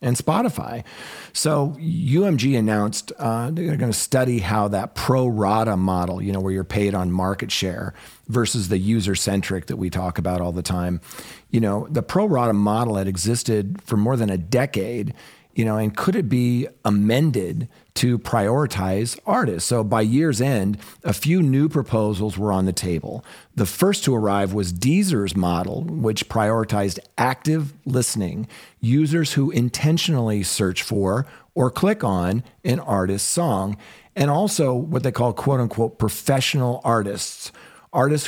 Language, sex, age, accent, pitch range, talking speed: English, male, 40-59, American, 100-135 Hz, 155 wpm